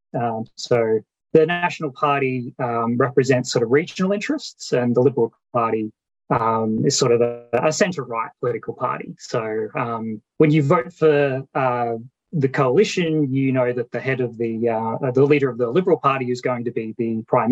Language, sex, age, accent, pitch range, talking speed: English, male, 30-49, Australian, 115-150 Hz, 180 wpm